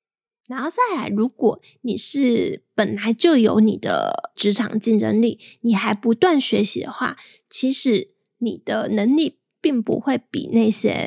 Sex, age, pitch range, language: female, 20-39, 220-275 Hz, Chinese